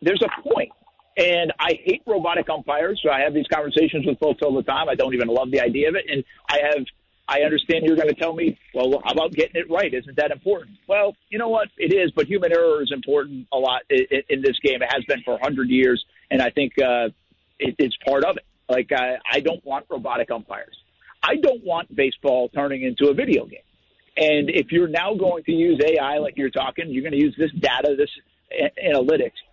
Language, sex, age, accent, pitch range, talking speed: English, male, 50-69, American, 145-245 Hz, 230 wpm